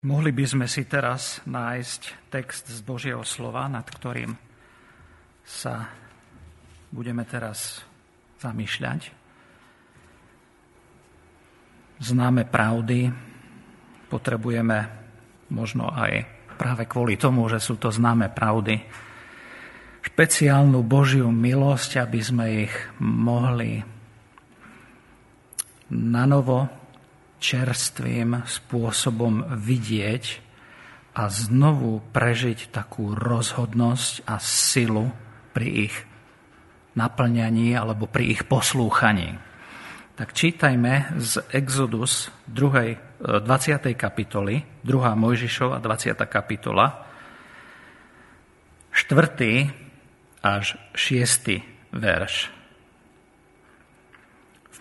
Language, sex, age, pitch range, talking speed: Slovak, male, 50-69, 115-130 Hz, 75 wpm